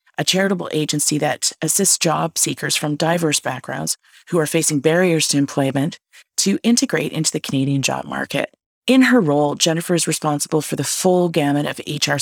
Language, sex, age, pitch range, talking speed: English, female, 40-59, 145-170 Hz, 170 wpm